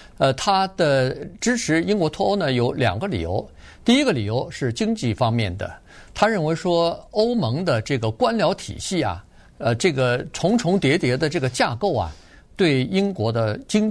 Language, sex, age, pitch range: Chinese, male, 50-69, 115-155 Hz